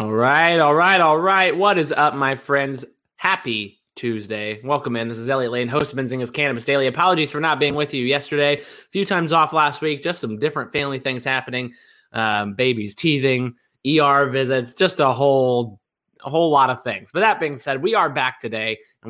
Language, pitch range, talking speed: English, 120-150 Hz, 205 wpm